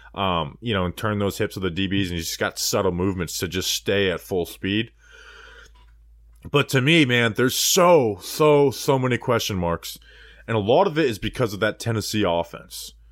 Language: English